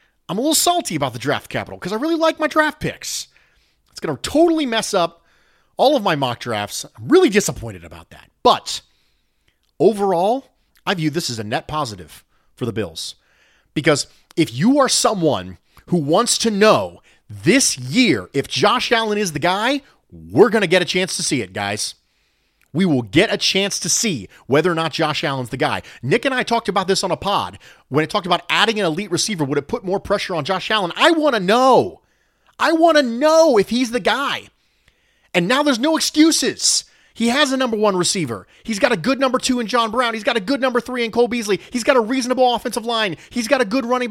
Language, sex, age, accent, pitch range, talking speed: English, male, 30-49, American, 160-255 Hz, 220 wpm